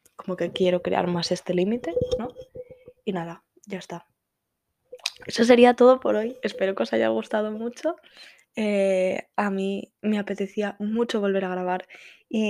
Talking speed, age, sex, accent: 160 wpm, 10-29, female, Spanish